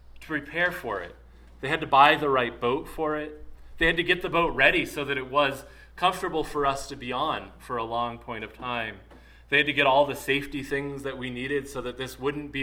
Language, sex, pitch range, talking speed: English, male, 110-165 Hz, 245 wpm